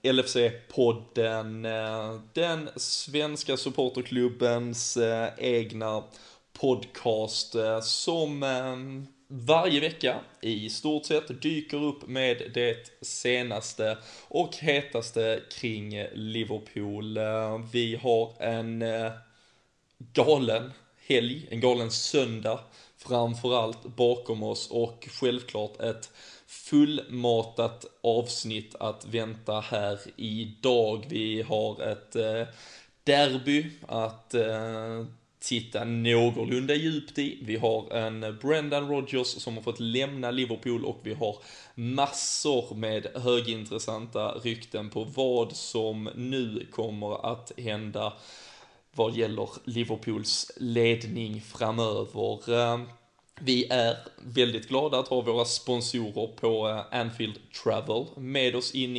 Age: 20-39